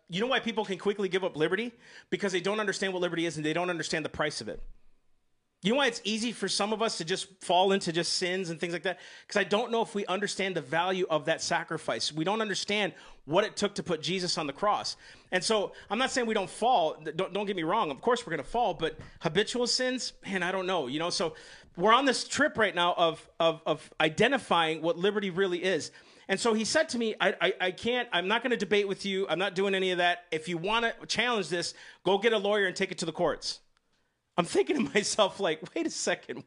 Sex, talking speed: male, 260 wpm